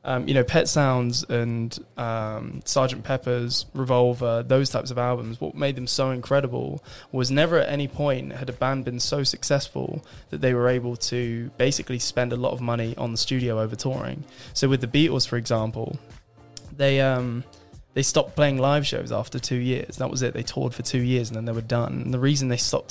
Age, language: 20-39, English